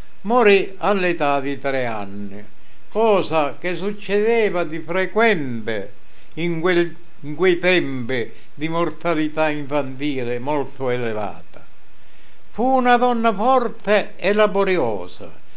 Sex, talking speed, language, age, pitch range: male, 95 wpm, Italian, 60-79, 140-200 Hz